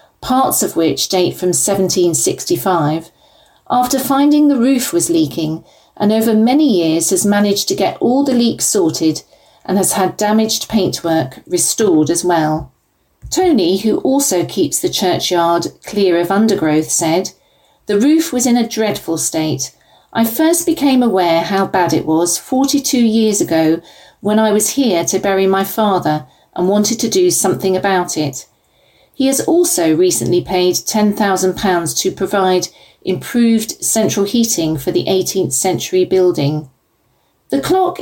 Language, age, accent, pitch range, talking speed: English, 40-59, British, 170-235 Hz, 145 wpm